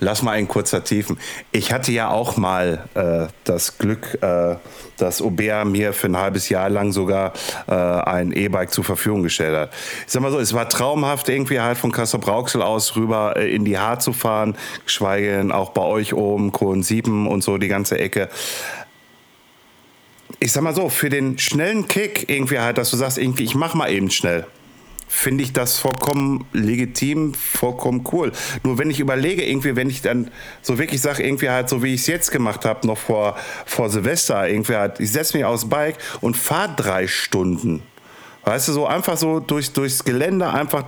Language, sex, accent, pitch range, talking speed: German, male, German, 105-145 Hz, 190 wpm